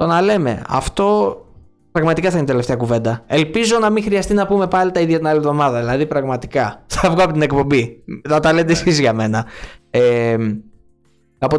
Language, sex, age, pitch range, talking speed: Greek, male, 20-39, 125-175 Hz, 190 wpm